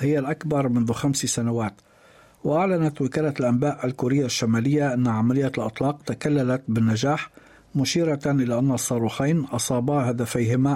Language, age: Arabic, 60-79